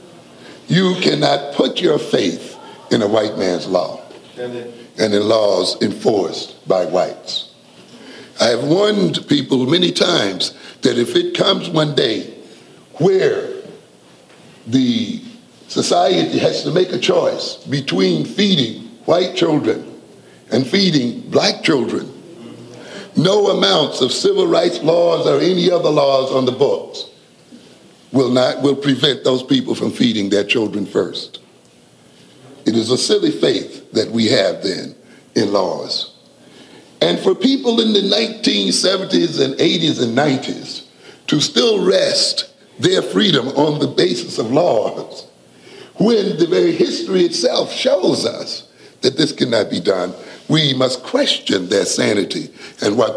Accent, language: American, English